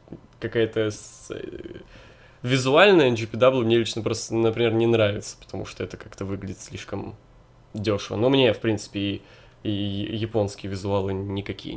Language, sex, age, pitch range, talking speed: Russian, male, 20-39, 105-130 Hz, 135 wpm